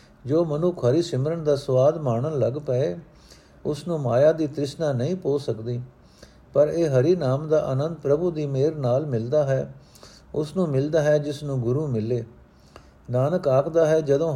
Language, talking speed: Punjabi, 170 wpm